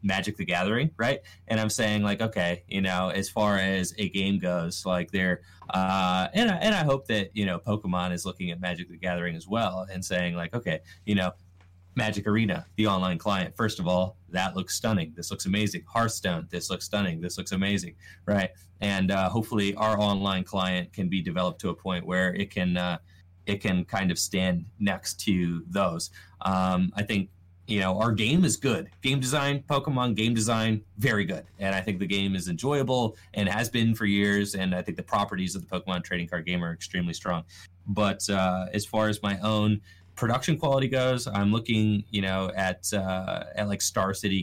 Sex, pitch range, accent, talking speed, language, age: male, 90-105 Hz, American, 200 wpm, English, 20-39